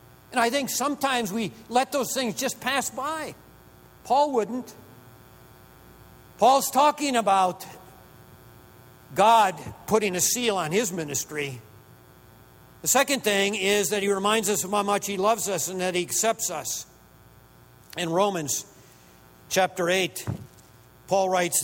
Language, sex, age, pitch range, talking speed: English, male, 50-69, 175-220 Hz, 135 wpm